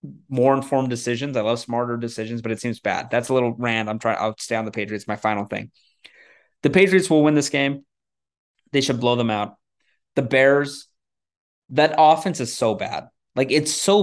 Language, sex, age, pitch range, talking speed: English, male, 20-39, 105-135 Hz, 195 wpm